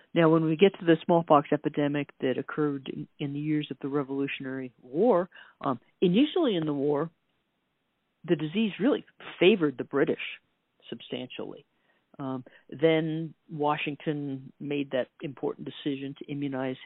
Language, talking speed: English, 140 wpm